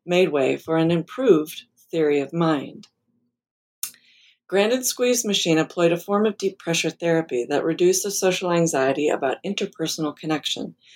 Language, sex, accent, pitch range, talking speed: English, female, American, 155-190 Hz, 140 wpm